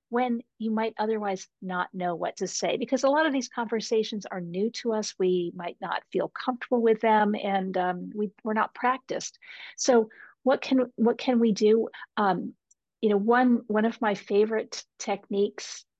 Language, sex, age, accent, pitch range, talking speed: English, female, 50-69, American, 190-240 Hz, 180 wpm